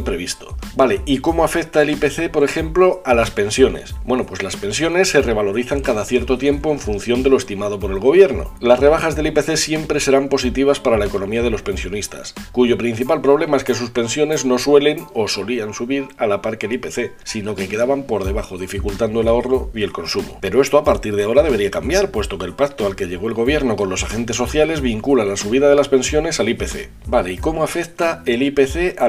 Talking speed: 220 wpm